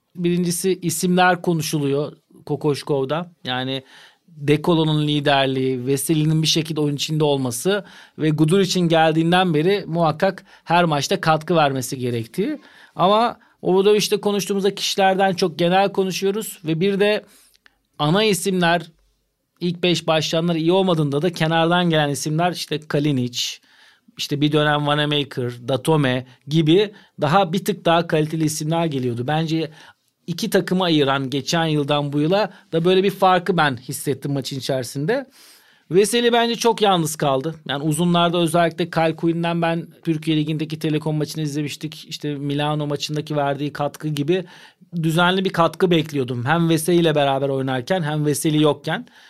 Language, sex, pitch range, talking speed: Turkish, male, 145-185 Hz, 135 wpm